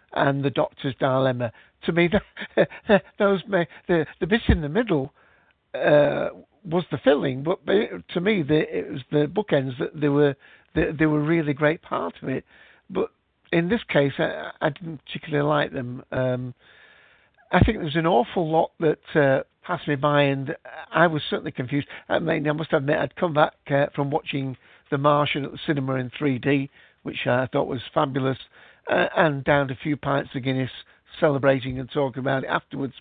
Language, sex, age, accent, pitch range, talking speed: English, male, 60-79, British, 135-160 Hz, 195 wpm